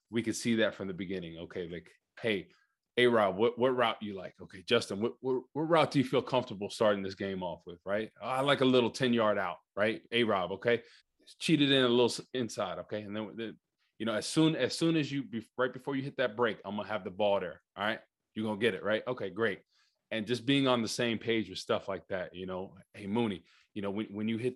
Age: 20-39